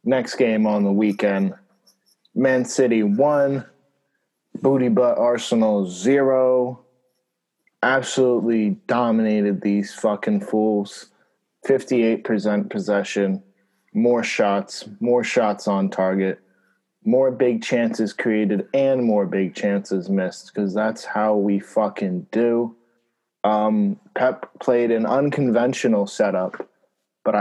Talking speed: 105 wpm